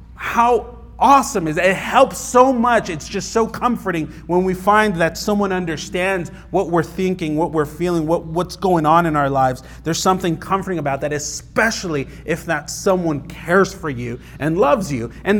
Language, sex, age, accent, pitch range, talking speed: English, male, 30-49, American, 165-225 Hz, 185 wpm